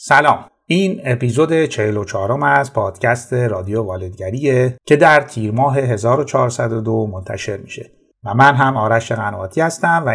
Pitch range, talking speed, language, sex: 115-145 Hz, 135 wpm, Persian, male